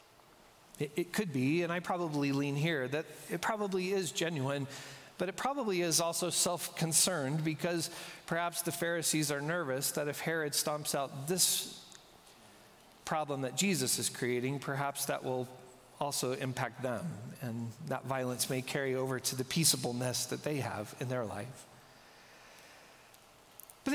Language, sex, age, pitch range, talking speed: English, male, 40-59, 145-195 Hz, 145 wpm